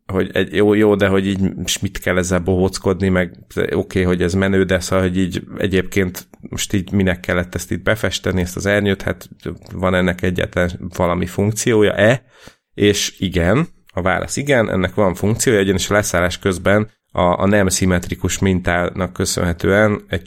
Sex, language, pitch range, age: male, Hungarian, 90-100 Hz, 30-49